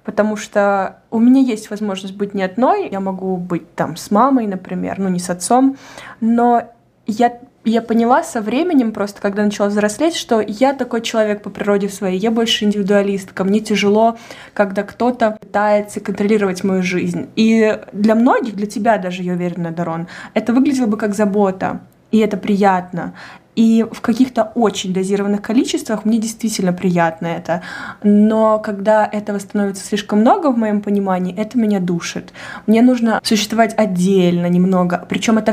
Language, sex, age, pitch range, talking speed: Russian, female, 20-39, 195-225 Hz, 160 wpm